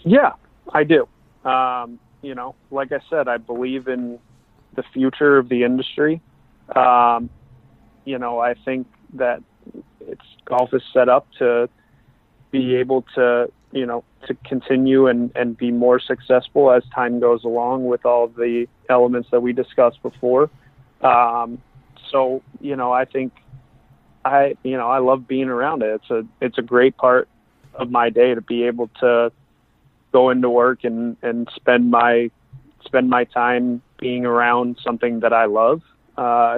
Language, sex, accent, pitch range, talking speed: English, male, American, 120-130 Hz, 160 wpm